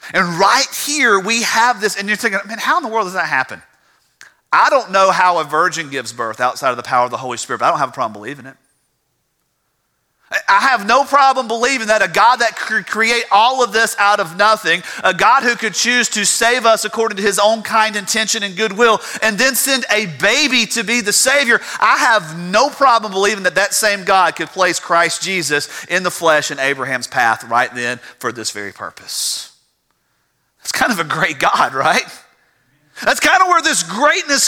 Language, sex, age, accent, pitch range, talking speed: English, male, 40-59, American, 140-230 Hz, 210 wpm